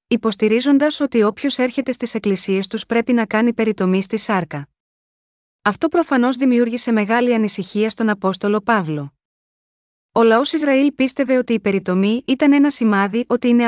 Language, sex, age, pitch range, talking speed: Greek, female, 20-39, 205-255 Hz, 145 wpm